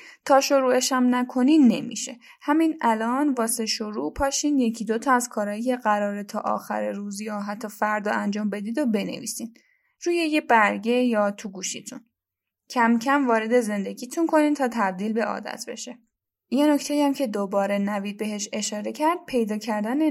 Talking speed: 155 wpm